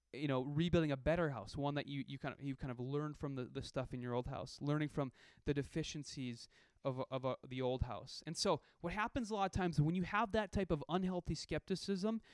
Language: English